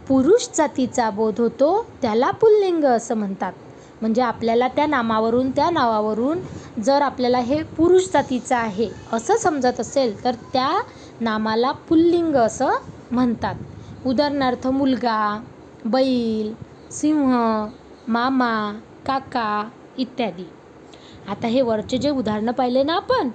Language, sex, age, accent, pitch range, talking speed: Marathi, female, 20-39, native, 230-300 Hz, 115 wpm